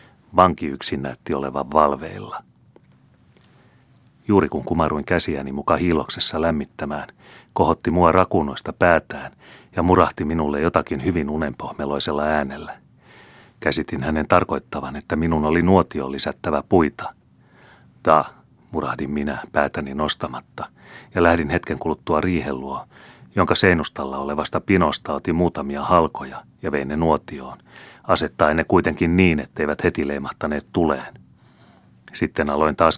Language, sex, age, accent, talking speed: Finnish, male, 30-49, native, 115 wpm